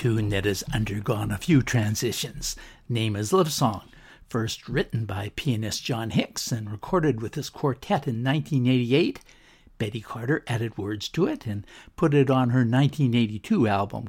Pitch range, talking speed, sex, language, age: 110-140 Hz, 155 wpm, male, English, 60-79